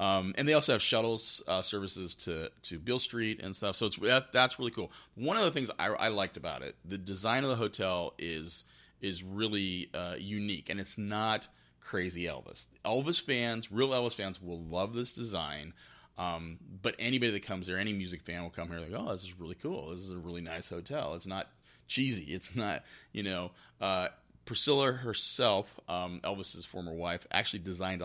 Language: English